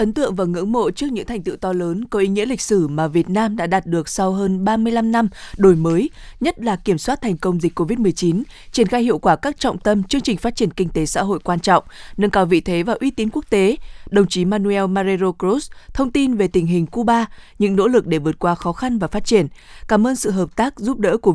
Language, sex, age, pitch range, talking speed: Vietnamese, female, 20-39, 175-220 Hz, 260 wpm